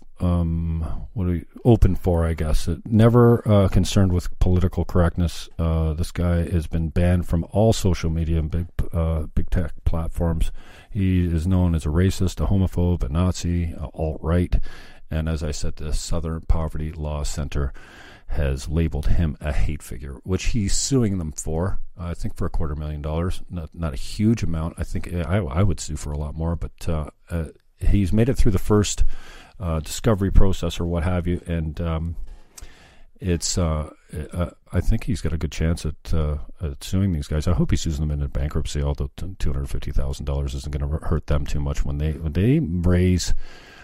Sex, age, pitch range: male, 40-59, 75-90 Hz